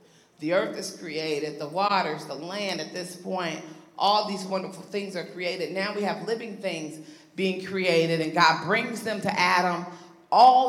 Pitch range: 175-220 Hz